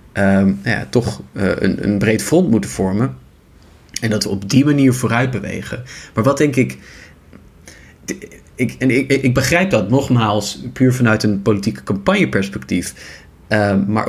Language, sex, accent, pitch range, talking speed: Dutch, male, Dutch, 100-125 Hz, 145 wpm